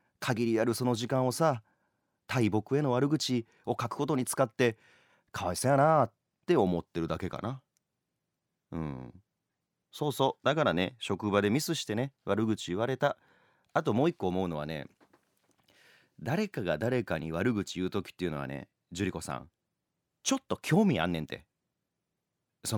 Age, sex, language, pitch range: 30-49, male, Japanese, 90-140 Hz